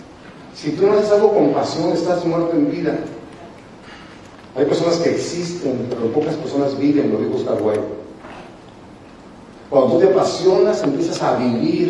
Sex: male